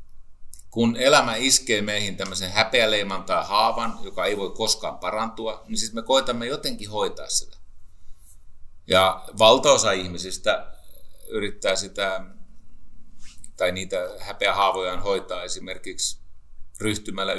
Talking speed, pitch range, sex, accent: 105 wpm, 80-100 Hz, male, native